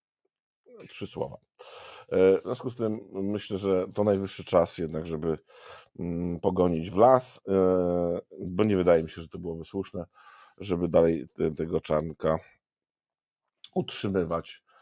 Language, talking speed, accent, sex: Polish, 125 wpm, native, male